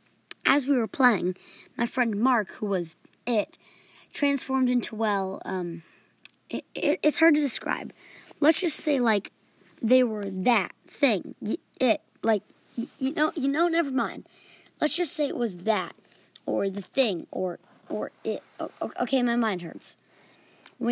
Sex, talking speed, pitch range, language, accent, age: male, 150 wpm, 200-275 Hz, English, American, 20-39